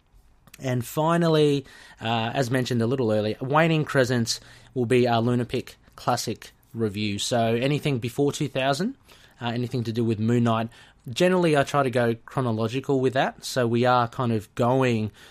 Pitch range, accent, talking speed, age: 110-135 Hz, Australian, 160 wpm, 20-39